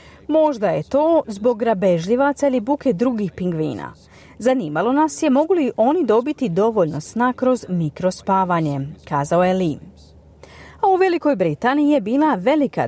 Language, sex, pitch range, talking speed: Croatian, female, 180-280 Hz, 140 wpm